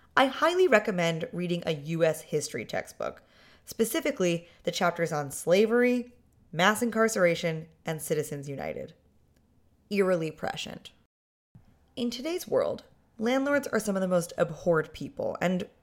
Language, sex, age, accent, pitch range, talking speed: English, female, 20-39, American, 160-205 Hz, 120 wpm